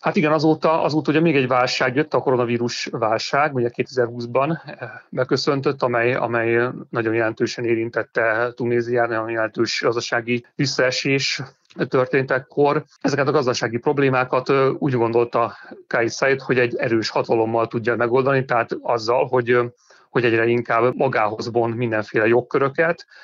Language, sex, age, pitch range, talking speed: Hungarian, male, 40-59, 115-135 Hz, 125 wpm